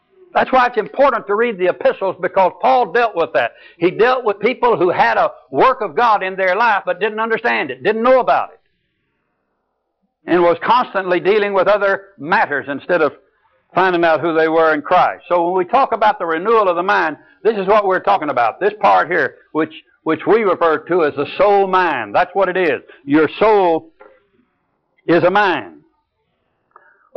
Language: English